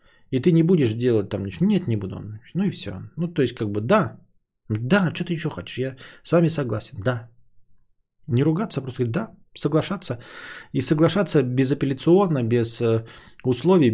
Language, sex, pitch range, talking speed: Bulgarian, male, 115-150 Hz, 175 wpm